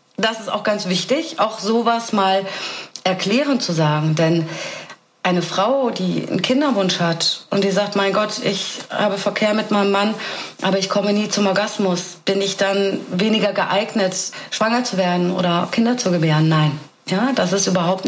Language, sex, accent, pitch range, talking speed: German, female, German, 180-220 Hz, 175 wpm